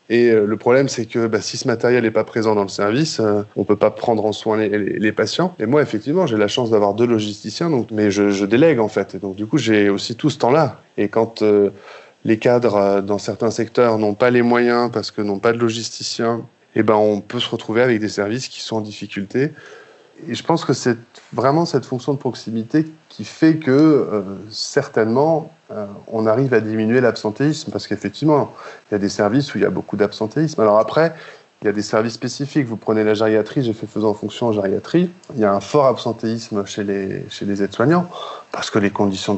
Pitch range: 105-125 Hz